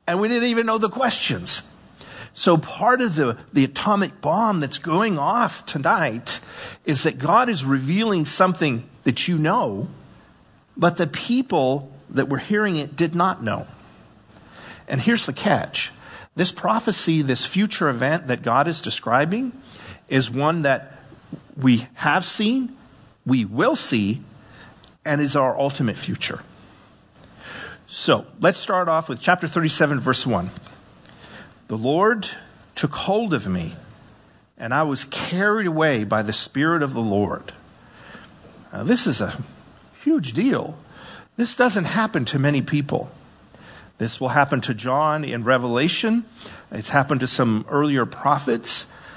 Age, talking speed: 50-69, 140 wpm